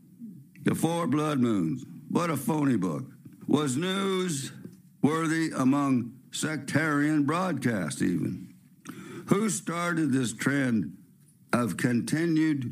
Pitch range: 105-160 Hz